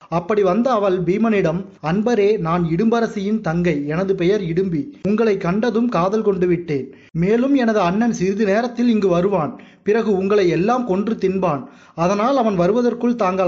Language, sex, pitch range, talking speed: Tamil, male, 175-220 Hz, 145 wpm